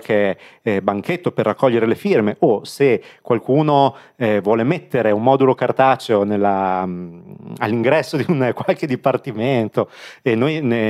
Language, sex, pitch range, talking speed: Italian, male, 110-140 Hz, 140 wpm